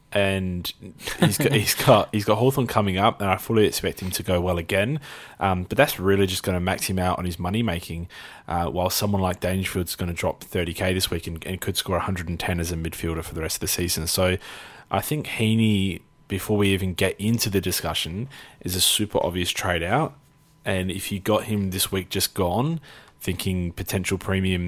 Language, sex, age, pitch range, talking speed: English, male, 20-39, 90-105 Hz, 210 wpm